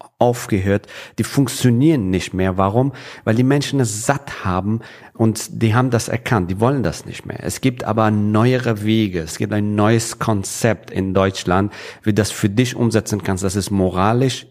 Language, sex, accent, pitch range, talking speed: German, male, German, 100-125 Hz, 180 wpm